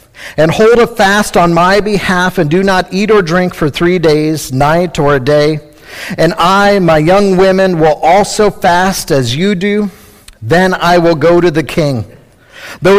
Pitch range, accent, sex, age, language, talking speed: 130-175 Hz, American, male, 50-69, English, 180 wpm